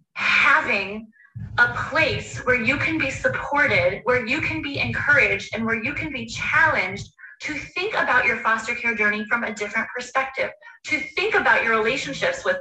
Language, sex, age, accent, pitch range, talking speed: English, female, 20-39, American, 220-320 Hz, 170 wpm